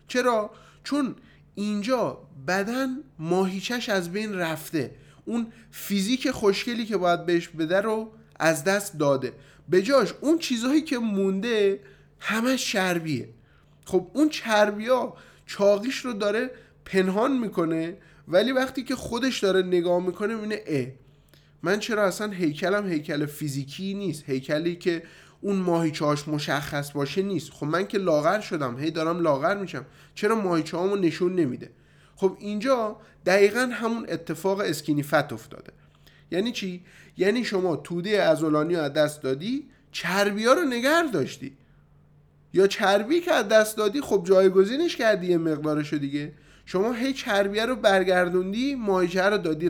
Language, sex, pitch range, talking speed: Persian, male, 160-225 Hz, 135 wpm